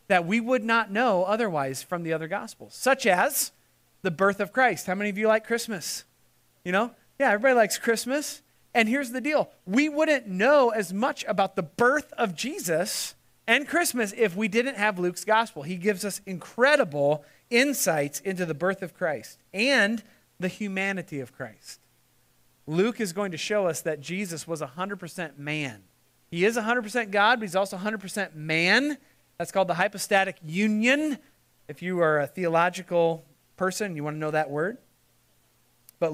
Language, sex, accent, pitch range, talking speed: English, male, American, 165-230 Hz, 170 wpm